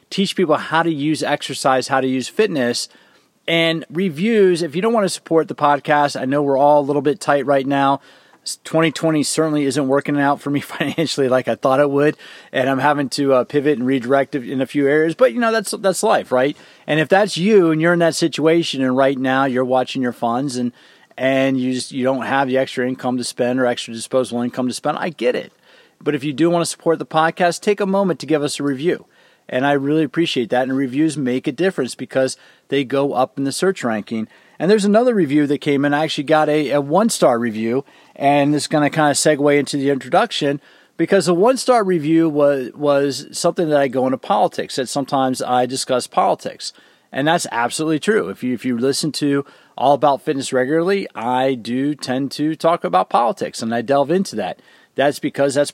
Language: English